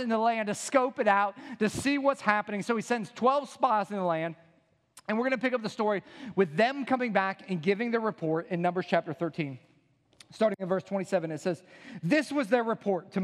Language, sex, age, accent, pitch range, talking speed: English, male, 40-59, American, 210-275 Hz, 225 wpm